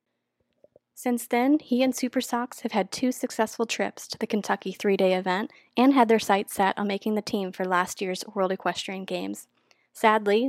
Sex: female